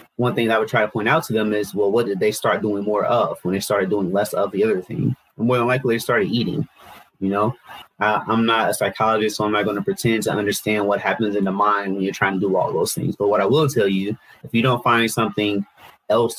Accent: American